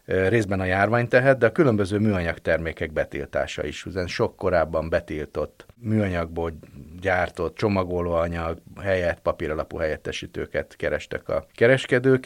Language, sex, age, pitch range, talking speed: Hungarian, male, 30-49, 85-115 Hz, 115 wpm